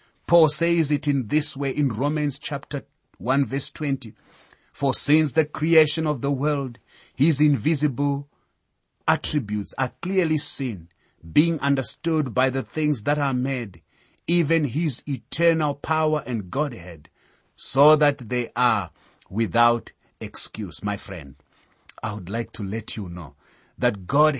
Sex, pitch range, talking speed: male, 110-150 Hz, 140 wpm